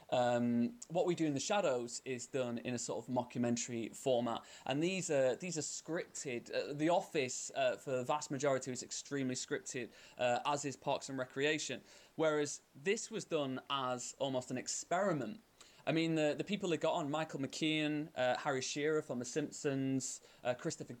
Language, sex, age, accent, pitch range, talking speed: English, male, 20-39, British, 130-155 Hz, 180 wpm